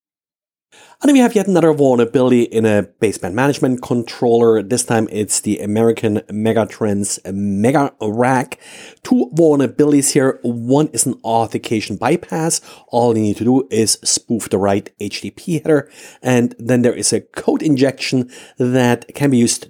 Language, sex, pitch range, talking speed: English, male, 110-150 Hz, 150 wpm